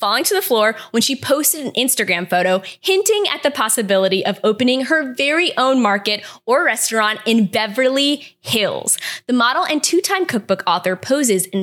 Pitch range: 195-275 Hz